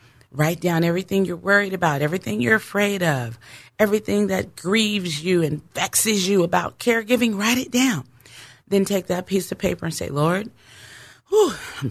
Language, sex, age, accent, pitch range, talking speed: English, female, 40-59, American, 125-190 Hz, 160 wpm